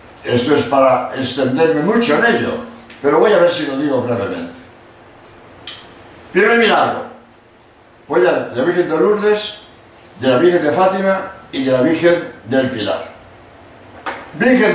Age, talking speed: 60-79, 145 wpm